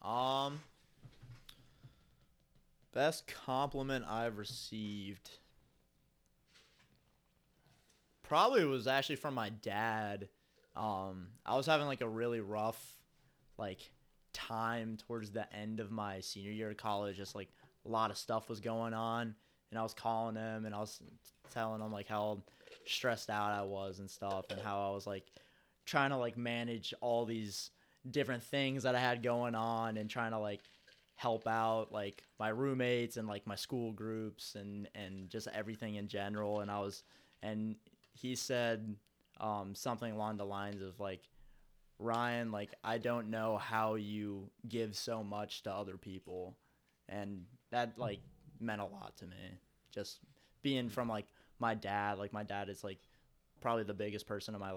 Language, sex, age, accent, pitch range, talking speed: English, male, 20-39, American, 100-120 Hz, 160 wpm